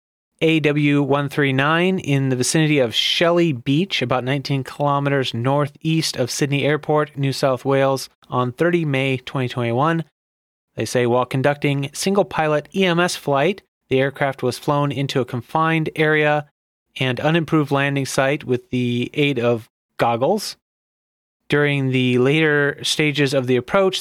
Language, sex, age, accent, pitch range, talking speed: English, male, 30-49, American, 125-155 Hz, 135 wpm